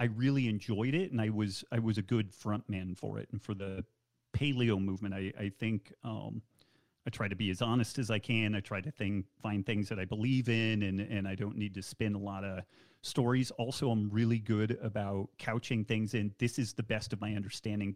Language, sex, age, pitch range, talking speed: English, male, 30-49, 100-120 Hz, 230 wpm